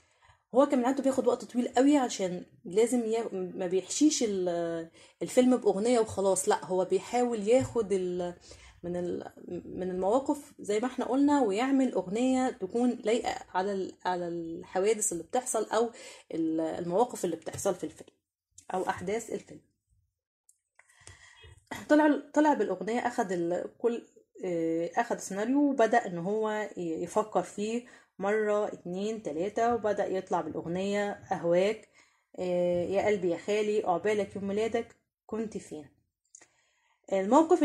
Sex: female